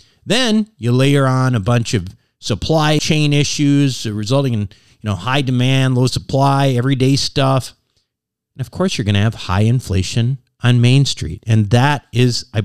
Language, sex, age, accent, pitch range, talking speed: English, male, 50-69, American, 105-140 Hz, 160 wpm